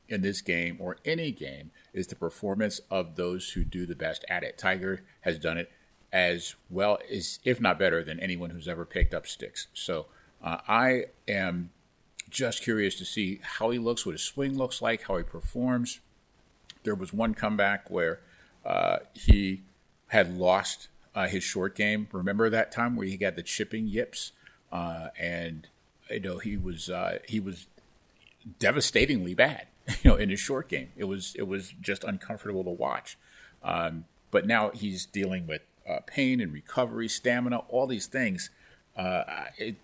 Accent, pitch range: American, 90-115 Hz